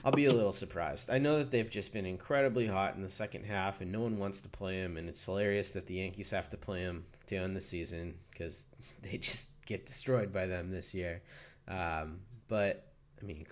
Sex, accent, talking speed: male, American, 225 wpm